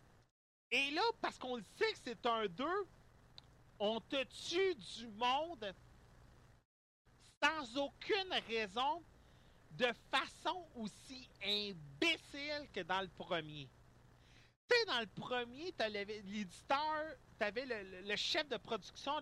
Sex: male